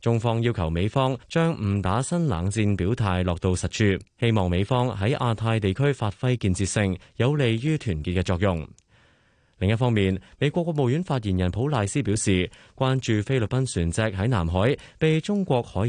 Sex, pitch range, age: male, 95-125 Hz, 20-39